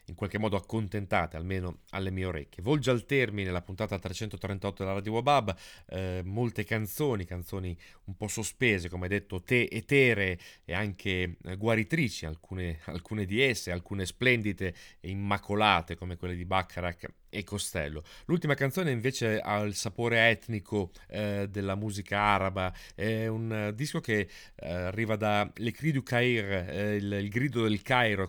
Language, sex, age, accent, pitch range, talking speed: Italian, male, 30-49, native, 95-115 Hz, 160 wpm